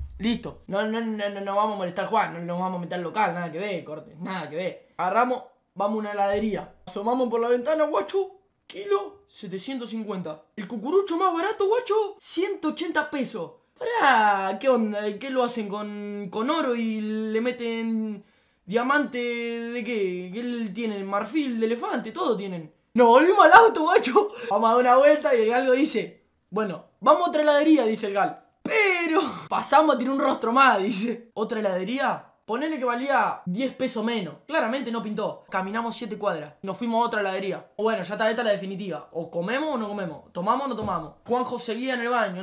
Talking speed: 195 wpm